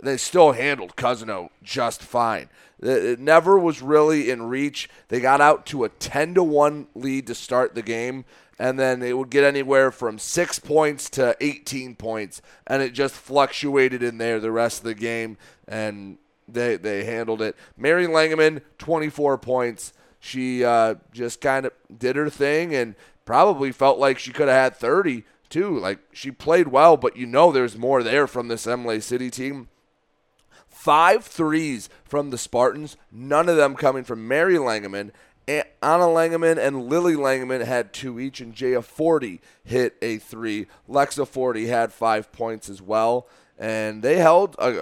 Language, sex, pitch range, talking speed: English, male, 115-145 Hz, 170 wpm